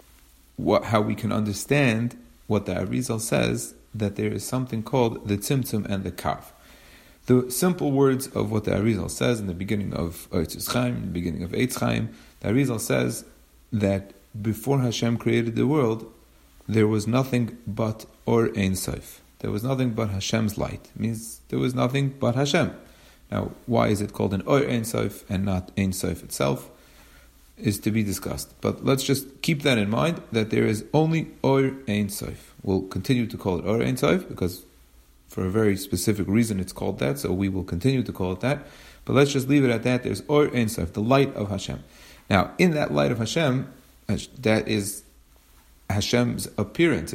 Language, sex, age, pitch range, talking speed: English, male, 40-59, 90-120 Hz, 190 wpm